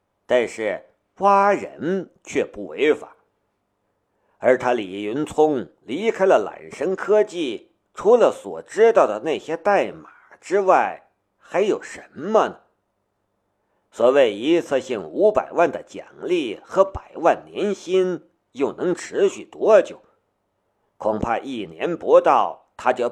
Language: Chinese